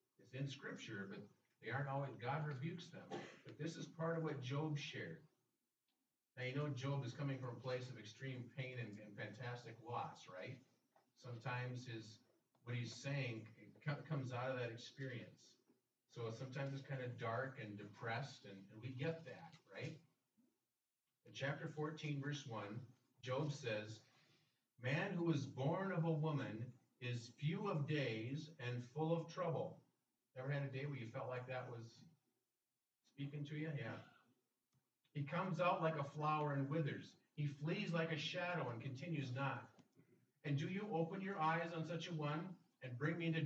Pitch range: 125-160 Hz